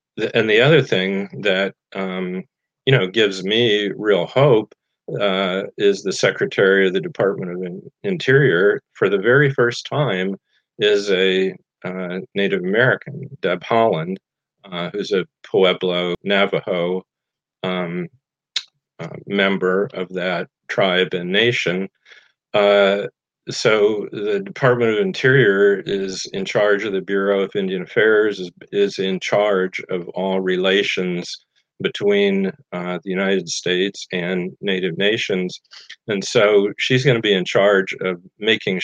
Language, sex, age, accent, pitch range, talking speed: English, male, 40-59, American, 95-125 Hz, 130 wpm